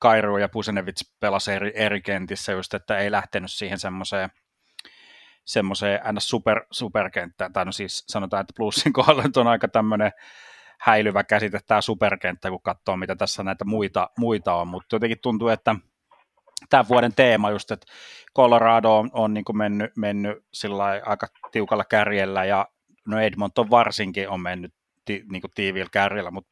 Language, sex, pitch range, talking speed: Finnish, male, 100-115 Hz, 155 wpm